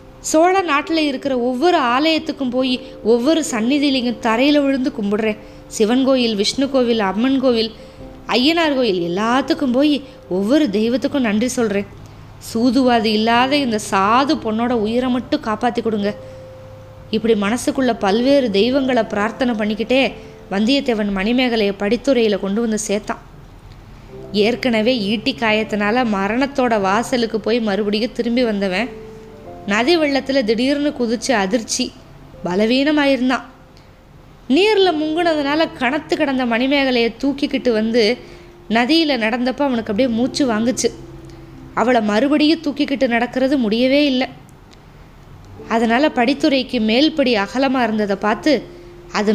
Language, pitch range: Tamil, 215-270 Hz